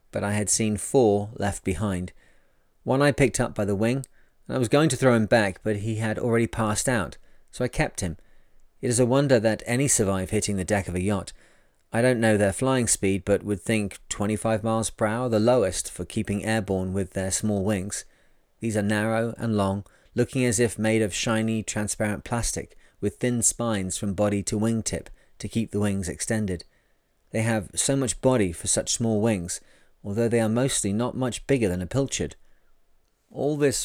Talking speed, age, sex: 200 wpm, 30-49, male